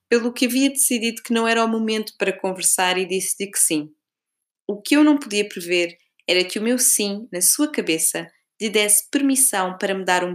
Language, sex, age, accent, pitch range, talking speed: Portuguese, female, 20-39, Brazilian, 175-225 Hz, 210 wpm